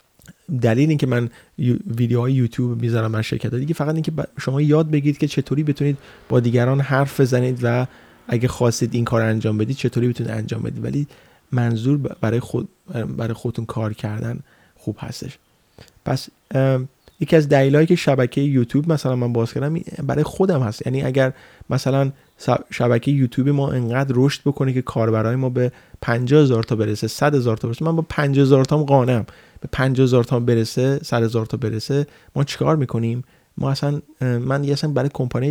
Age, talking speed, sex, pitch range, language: 30-49, 175 wpm, male, 115-140 Hz, Persian